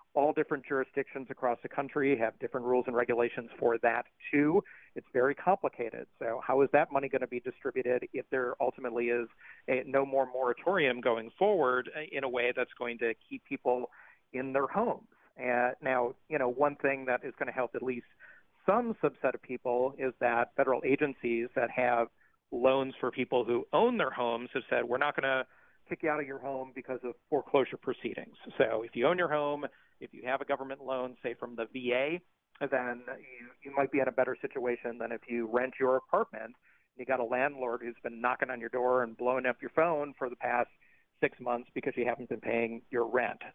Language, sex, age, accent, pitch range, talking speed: English, male, 40-59, American, 125-140 Hz, 210 wpm